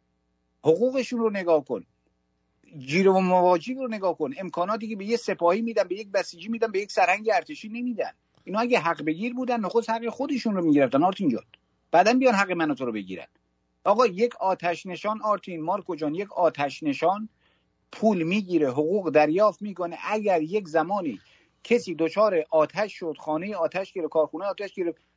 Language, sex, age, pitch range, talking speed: English, male, 50-69, 160-220 Hz, 170 wpm